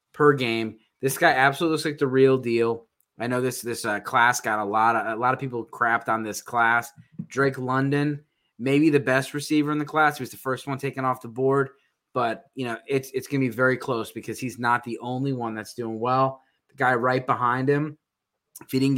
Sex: male